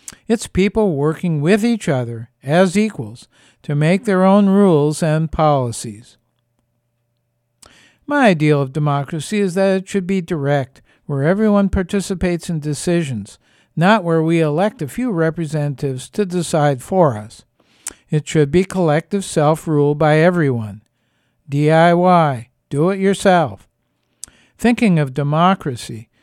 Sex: male